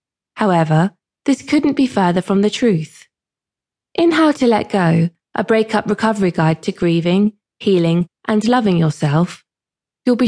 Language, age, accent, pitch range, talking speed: English, 20-39, British, 175-250 Hz, 145 wpm